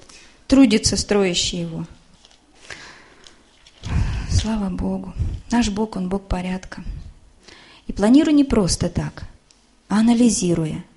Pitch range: 180-240 Hz